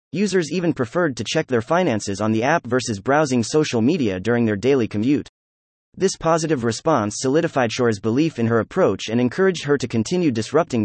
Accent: American